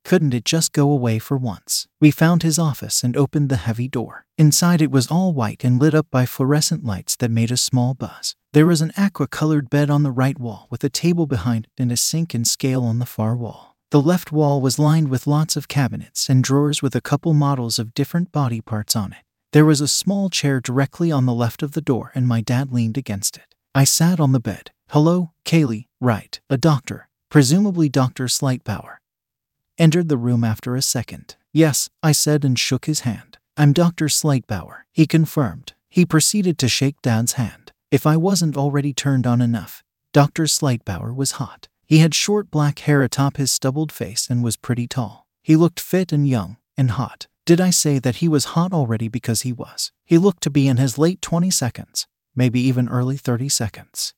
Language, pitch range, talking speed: English, 120-155 Hz, 205 wpm